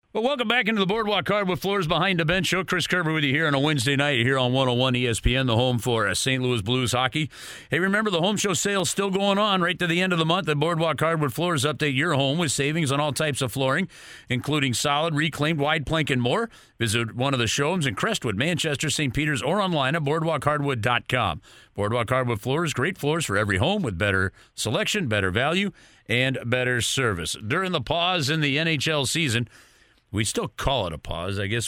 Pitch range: 115-155 Hz